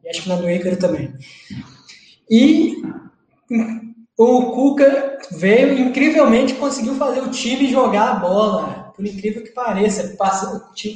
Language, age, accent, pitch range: Portuguese, 20-39, Brazilian, 185-230 Hz